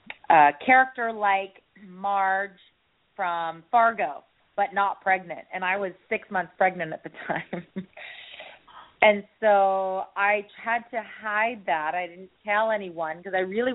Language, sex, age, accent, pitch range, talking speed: English, female, 30-49, American, 175-215 Hz, 140 wpm